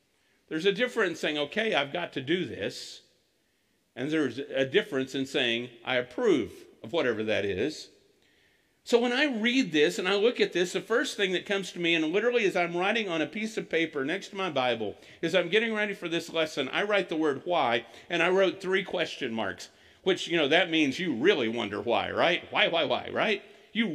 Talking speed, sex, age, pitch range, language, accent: 220 wpm, male, 50-69, 175-265 Hz, English, American